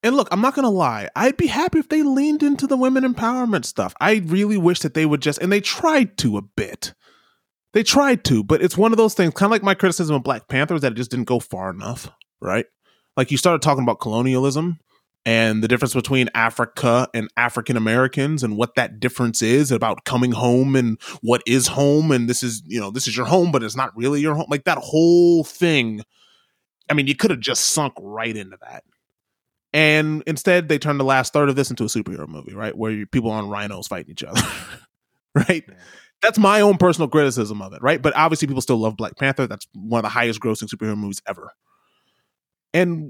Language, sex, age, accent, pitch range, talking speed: English, male, 20-39, American, 120-175 Hz, 220 wpm